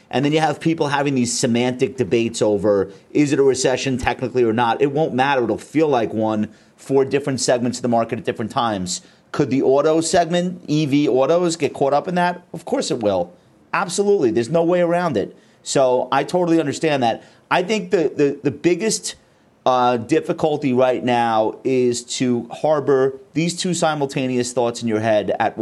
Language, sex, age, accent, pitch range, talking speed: English, male, 30-49, American, 115-155 Hz, 185 wpm